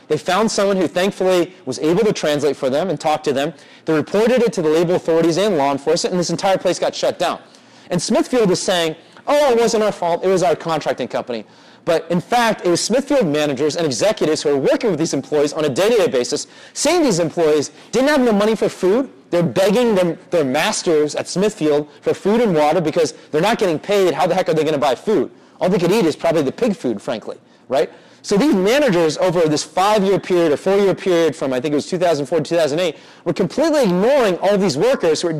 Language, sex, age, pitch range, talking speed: English, male, 30-49, 160-220 Hz, 230 wpm